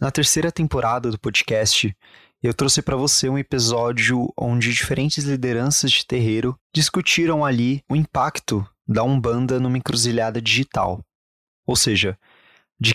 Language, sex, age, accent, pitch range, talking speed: Portuguese, male, 20-39, Brazilian, 115-145 Hz, 130 wpm